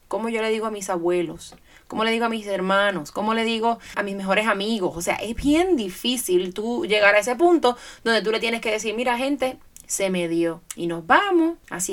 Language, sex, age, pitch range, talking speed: Spanish, female, 20-39, 175-230 Hz, 225 wpm